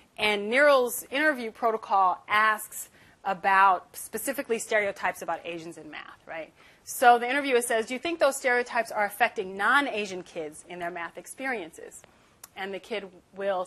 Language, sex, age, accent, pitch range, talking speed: English, female, 30-49, American, 185-245 Hz, 150 wpm